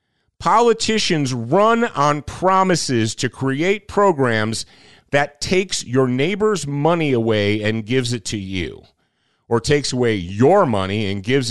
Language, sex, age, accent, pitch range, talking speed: English, male, 40-59, American, 115-180 Hz, 130 wpm